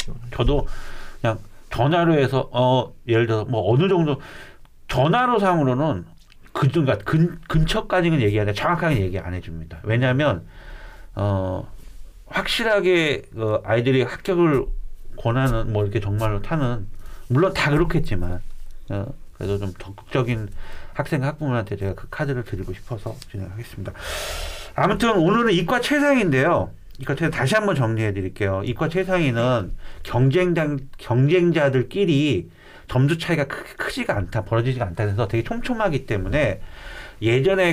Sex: male